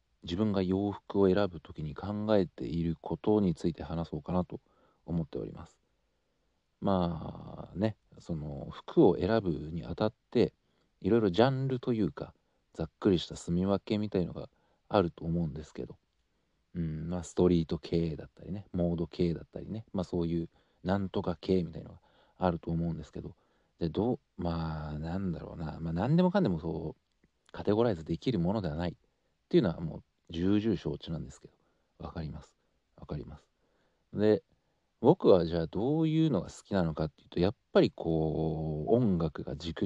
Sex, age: male, 40-59